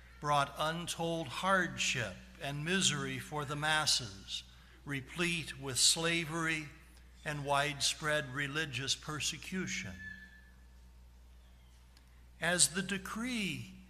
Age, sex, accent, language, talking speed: 60-79, male, American, English, 80 wpm